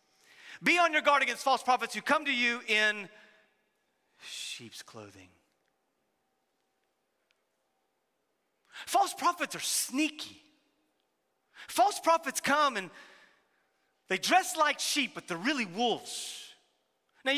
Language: English